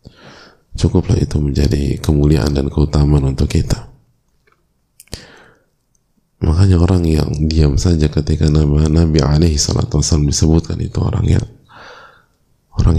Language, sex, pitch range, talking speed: Indonesian, male, 75-100 Hz, 100 wpm